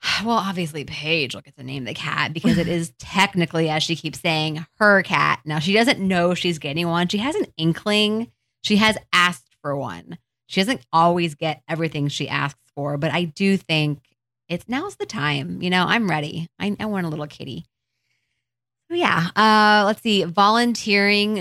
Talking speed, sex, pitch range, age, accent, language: 190 wpm, female, 150-180 Hz, 20-39, American, English